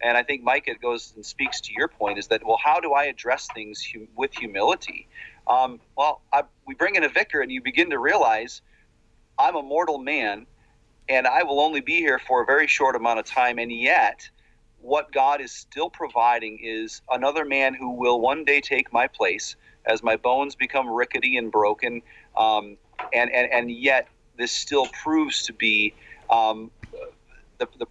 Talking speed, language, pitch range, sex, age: 190 wpm, English, 115-140 Hz, male, 40-59